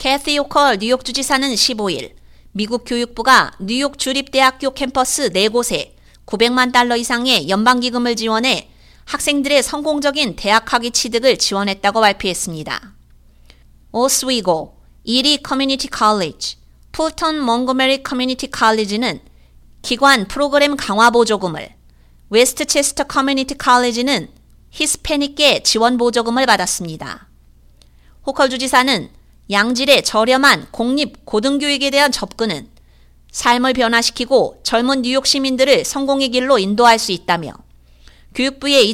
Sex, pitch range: female, 200-275 Hz